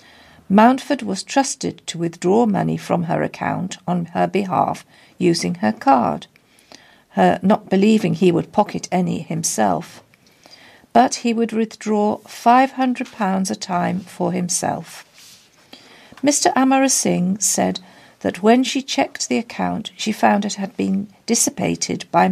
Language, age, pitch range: English, 50-69, 180-230 Hz